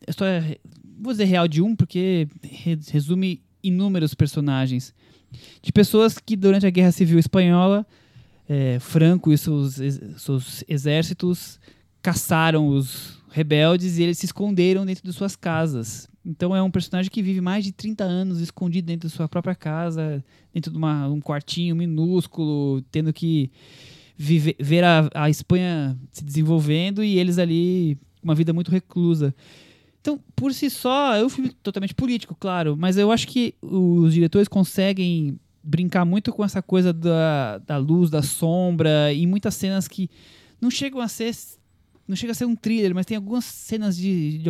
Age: 20-39